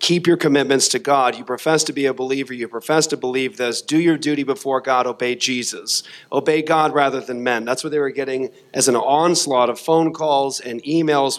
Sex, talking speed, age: male, 215 wpm, 40-59